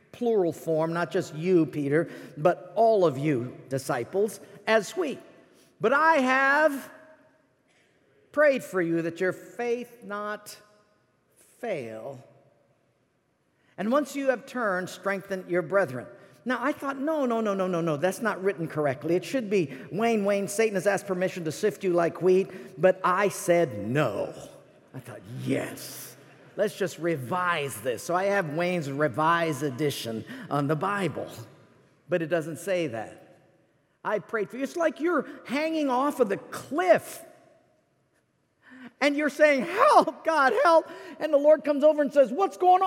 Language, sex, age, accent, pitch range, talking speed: English, male, 50-69, American, 175-285 Hz, 155 wpm